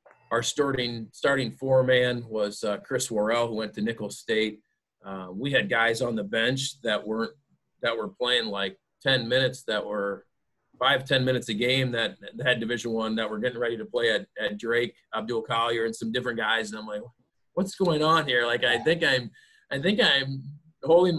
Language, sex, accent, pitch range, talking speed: English, male, American, 110-135 Hz, 200 wpm